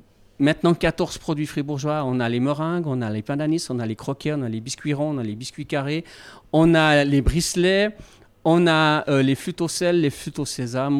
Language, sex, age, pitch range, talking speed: French, male, 40-59, 130-170 Hz, 230 wpm